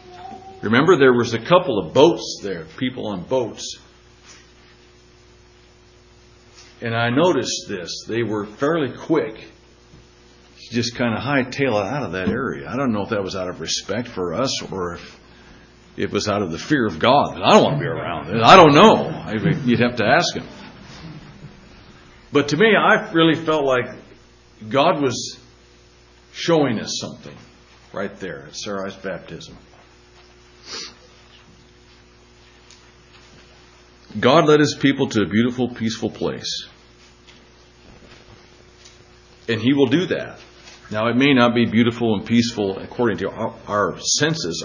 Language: English